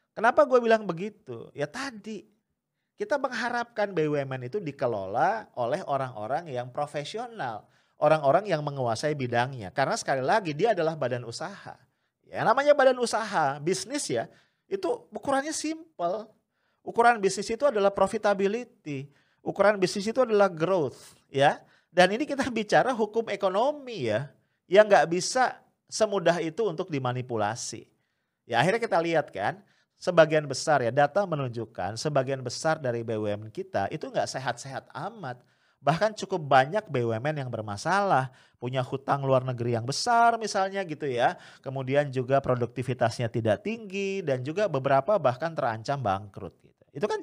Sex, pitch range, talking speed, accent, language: male, 130-210 Hz, 135 wpm, Indonesian, English